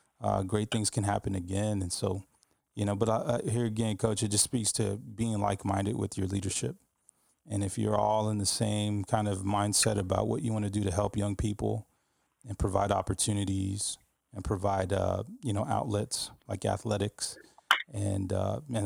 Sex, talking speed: male, 180 wpm